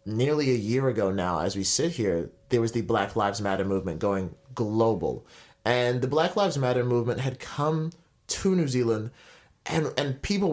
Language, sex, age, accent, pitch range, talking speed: English, male, 30-49, American, 110-140 Hz, 180 wpm